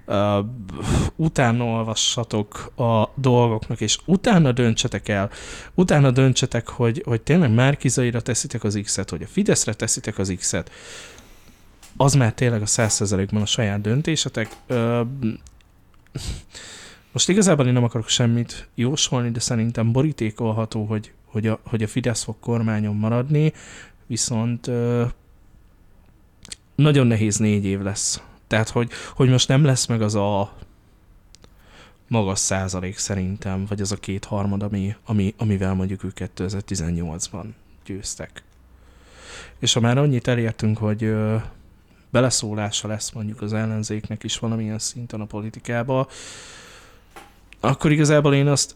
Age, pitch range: 20-39, 100-125 Hz